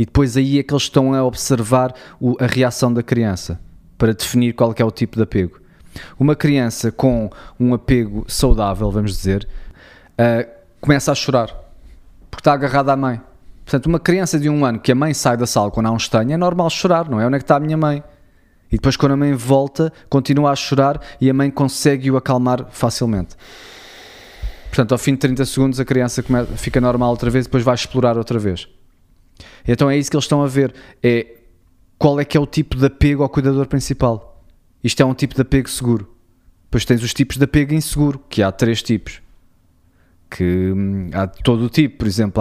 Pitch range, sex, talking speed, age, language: 105-135 Hz, male, 205 wpm, 20-39, Portuguese